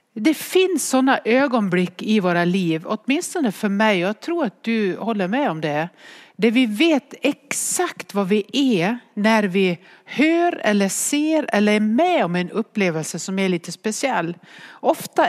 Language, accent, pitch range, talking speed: English, Swedish, 180-235 Hz, 160 wpm